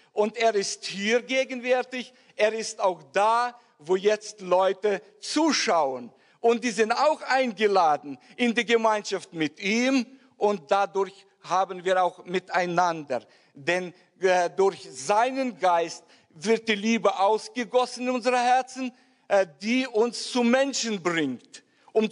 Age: 50-69